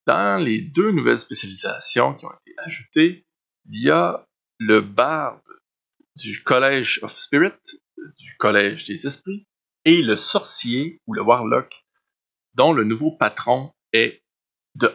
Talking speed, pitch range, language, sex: 135 wpm, 120-195 Hz, French, male